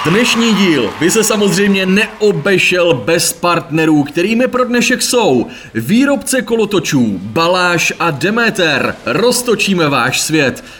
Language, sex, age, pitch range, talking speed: Czech, male, 30-49, 135-200 Hz, 110 wpm